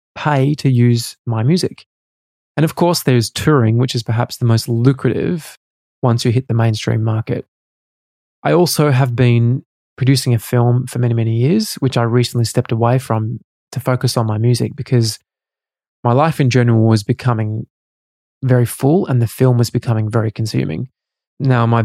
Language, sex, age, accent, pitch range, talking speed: English, male, 20-39, Australian, 115-130 Hz, 170 wpm